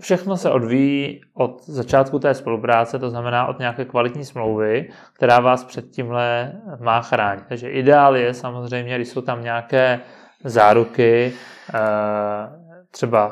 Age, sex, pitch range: 20-39, male, 115-135 Hz